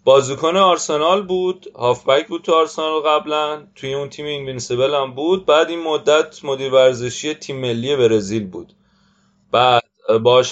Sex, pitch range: male, 125-175 Hz